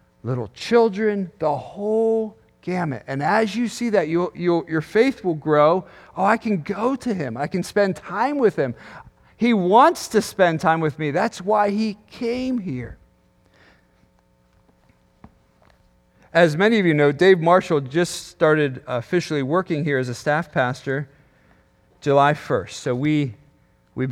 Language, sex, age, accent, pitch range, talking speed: English, male, 40-59, American, 135-195 Hz, 150 wpm